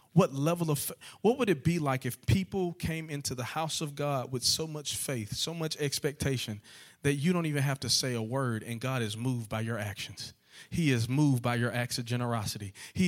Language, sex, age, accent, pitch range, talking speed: English, male, 40-59, American, 120-145 Hz, 220 wpm